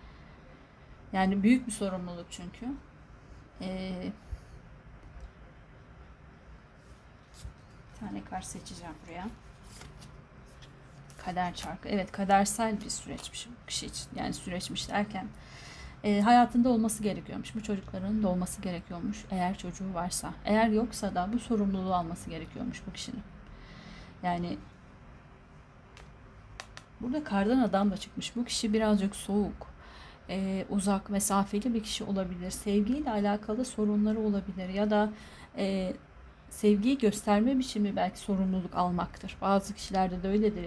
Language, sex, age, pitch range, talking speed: Turkish, female, 30-49, 185-220 Hz, 115 wpm